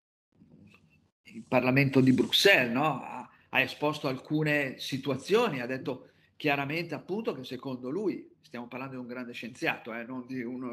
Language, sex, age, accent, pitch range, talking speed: Italian, male, 50-69, native, 125-155 Hz, 150 wpm